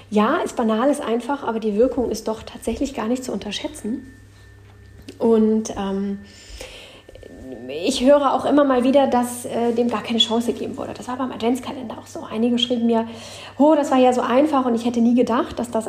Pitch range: 210-260 Hz